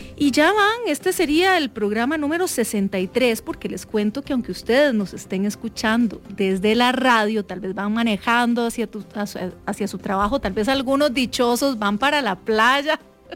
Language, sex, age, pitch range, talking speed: English, female, 30-49, 210-275 Hz, 165 wpm